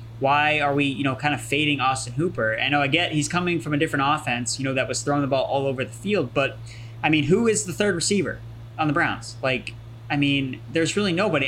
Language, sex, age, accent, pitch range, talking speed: English, male, 20-39, American, 130-165 Hz, 250 wpm